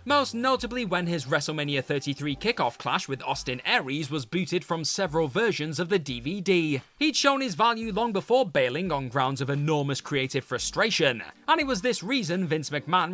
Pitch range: 150-235 Hz